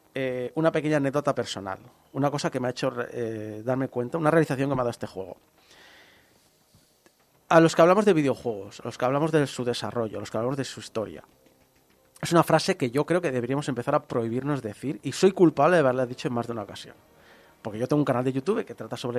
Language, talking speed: Spanish, 235 wpm